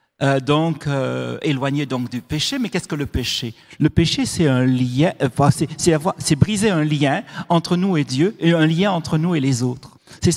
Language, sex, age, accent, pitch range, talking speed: French, male, 60-79, French, 130-170 Hz, 220 wpm